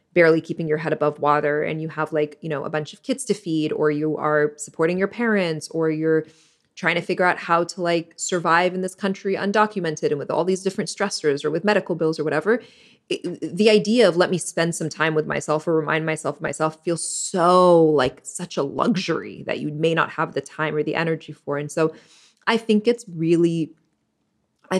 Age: 20-39